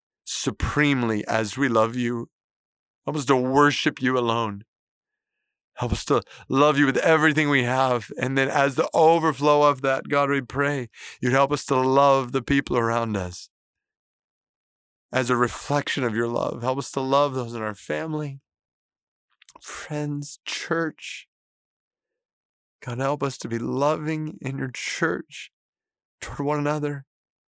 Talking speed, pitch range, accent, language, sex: 145 wpm, 135-205 Hz, American, English, male